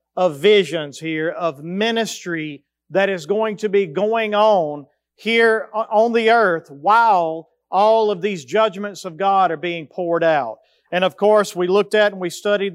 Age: 40-59